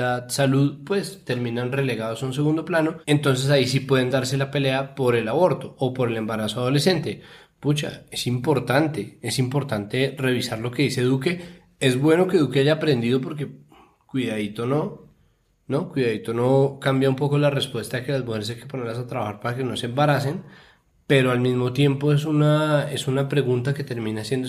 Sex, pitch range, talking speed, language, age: male, 125-145 Hz, 190 wpm, Spanish, 20-39